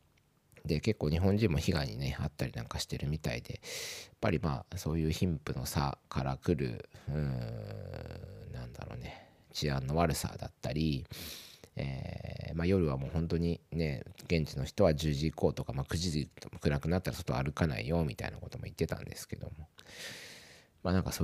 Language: Japanese